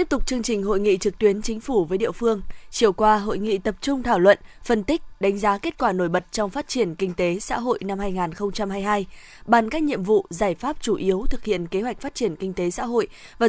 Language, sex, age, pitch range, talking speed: Vietnamese, female, 20-39, 195-230 Hz, 255 wpm